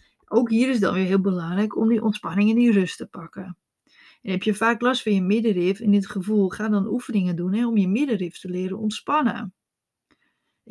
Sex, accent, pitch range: female, Dutch, 200-235 Hz